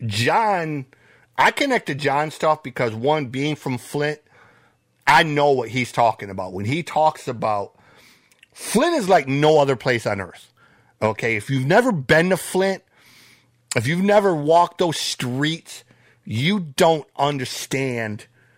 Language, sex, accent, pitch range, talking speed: English, male, American, 125-165 Hz, 145 wpm